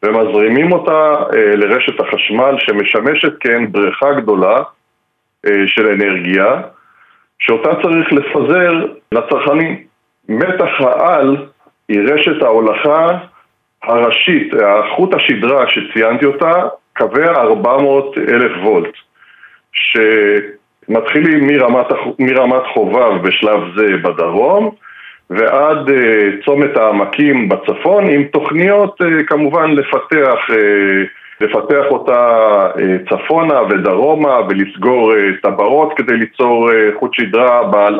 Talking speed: 85 wpm